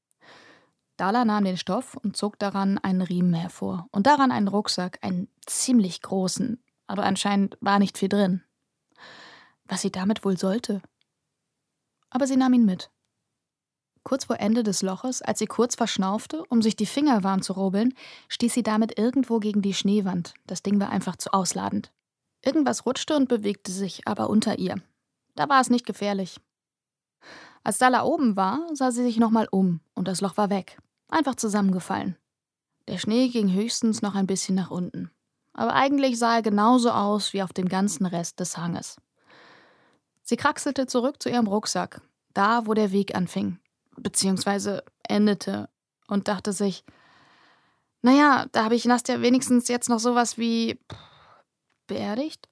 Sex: female